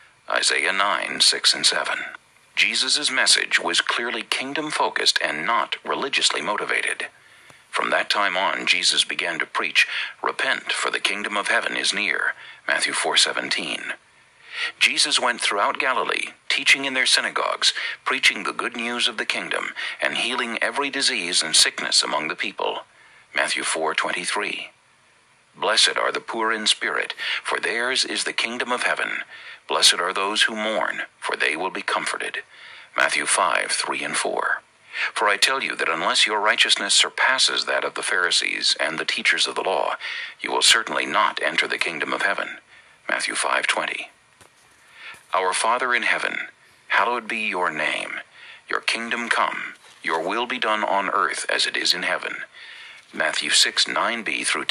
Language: English